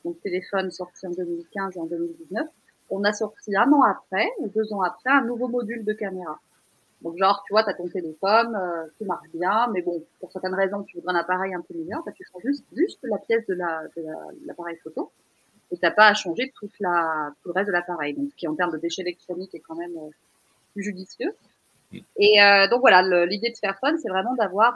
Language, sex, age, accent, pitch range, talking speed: French, female, 30-49, French, 180-245 Hz, 235 wpm